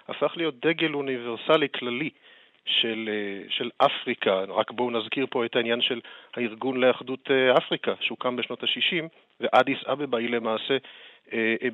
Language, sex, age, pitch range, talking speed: Hebrew, male, 40-59, 115-135 Hz, 130 wpm